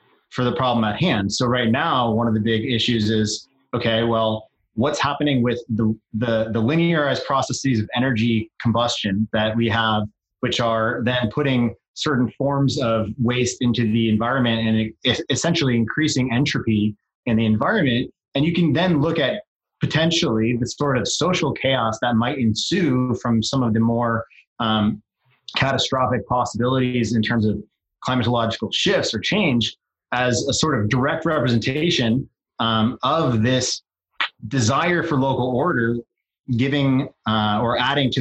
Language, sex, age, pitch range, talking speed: English, male, 30-49, 115-135 Hz, 150 wpm